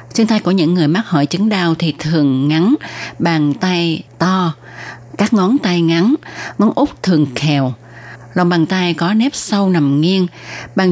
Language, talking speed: Vietnamese, 175 wpm